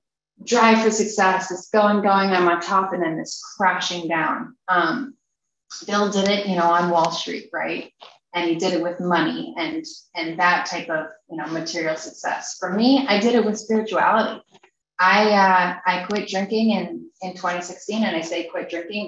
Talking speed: 185 wpm